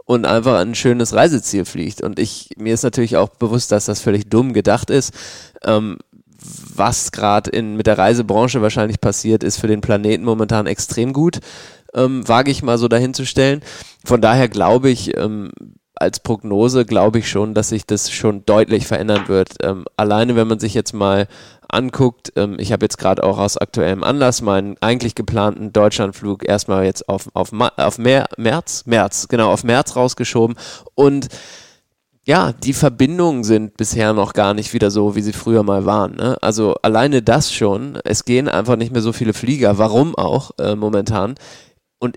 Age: 20-39